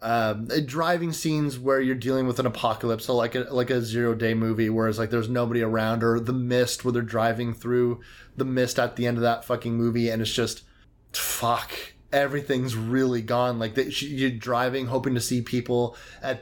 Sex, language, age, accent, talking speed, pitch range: male, English, 20-39, American, 190 wpm, 115-130 Hz